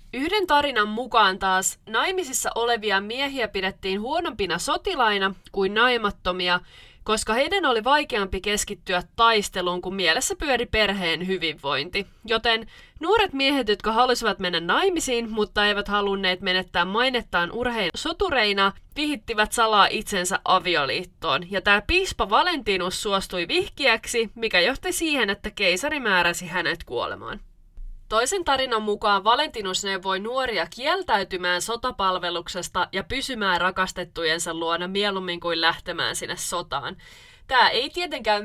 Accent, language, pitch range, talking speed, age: native, Finnish, 180-250 Hz, 115 wpm, 20-39